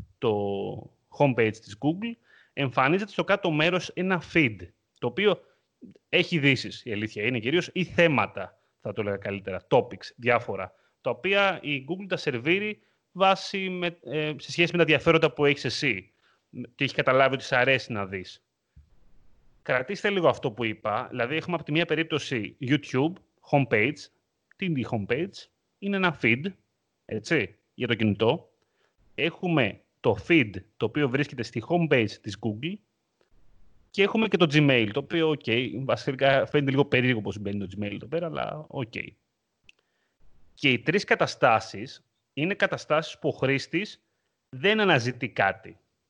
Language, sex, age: Greek, male, 30-49